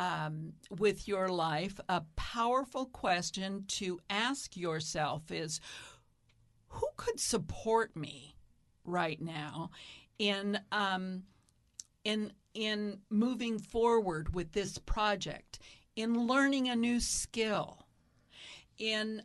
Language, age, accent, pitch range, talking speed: English, 50-69, American, 175-220 Hz, 100 wpm